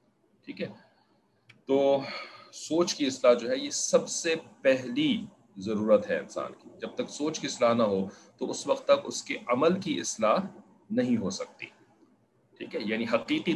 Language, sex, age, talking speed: English, male, 40-59, 165 wpm